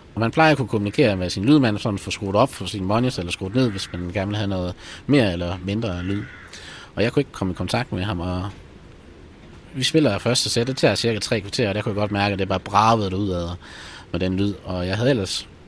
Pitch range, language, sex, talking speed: 90-110 Hz, Danish, male, 250 wpm